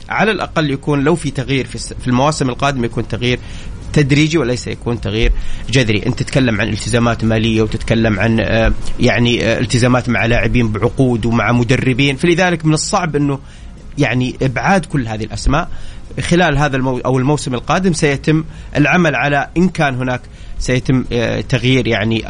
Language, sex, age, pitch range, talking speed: Arabic, male, 30-49, 115-150 Hz, 150 wpm